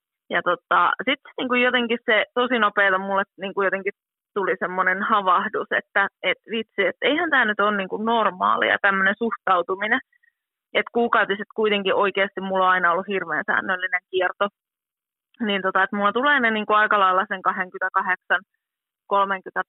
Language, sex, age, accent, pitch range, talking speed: Finnish, female, 20-39, native, 190-235 Hz, 145 wpm